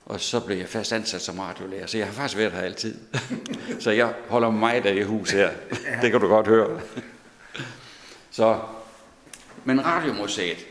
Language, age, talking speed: Danish, 60-79, 175 wpm